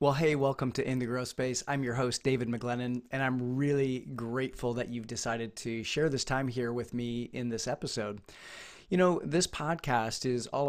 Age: 30-49